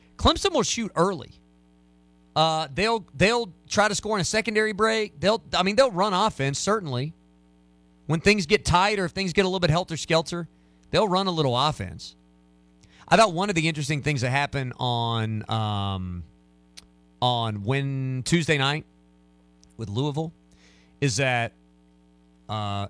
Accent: American